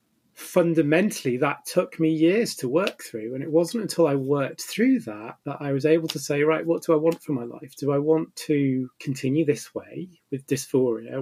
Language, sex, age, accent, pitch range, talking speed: English, male, 30-49, British, 130-160 Hz, 210 wpm